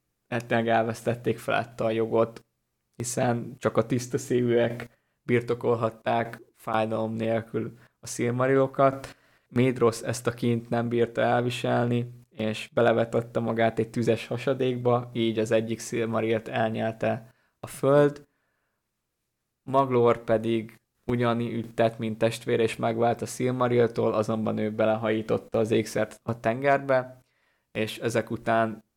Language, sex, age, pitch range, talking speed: Hungarian, male, 20-39, 110-120 Hz, 115 wpm